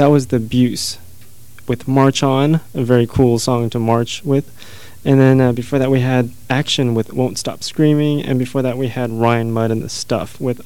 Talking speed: 210 wpm